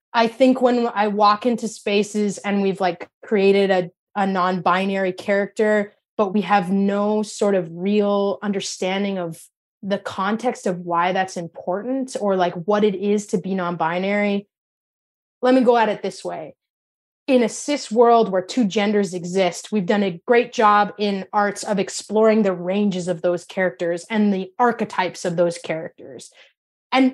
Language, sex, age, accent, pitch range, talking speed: English, female, 20-39, American, 185-235 Hz, 165 wpm